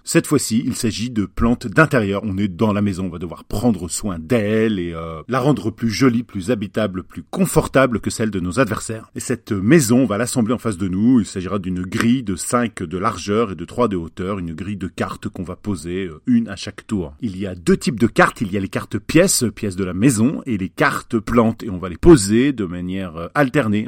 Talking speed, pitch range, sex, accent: 245 wpm, 95-125 Hz, male, French